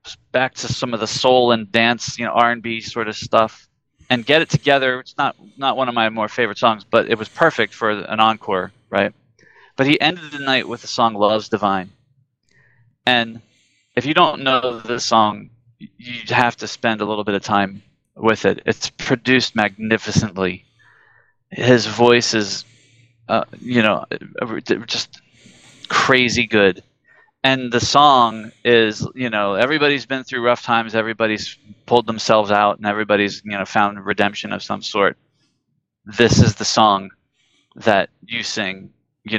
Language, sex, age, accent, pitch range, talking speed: English, male, 20-39, American, 105-125 Hz, 165 wpm